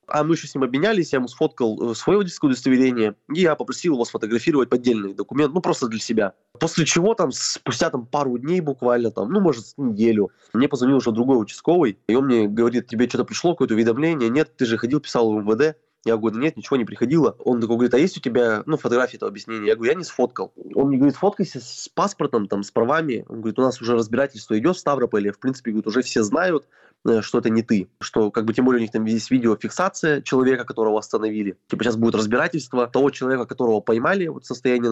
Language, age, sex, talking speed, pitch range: Russian, 20-39, male, 215 wpm, 115-150 Hz